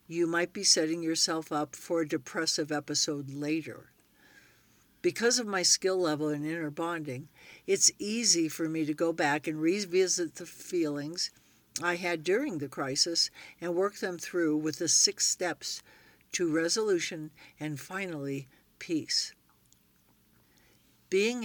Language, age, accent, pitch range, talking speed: English, 60-79, American, 155-180 Hz, 135 wpm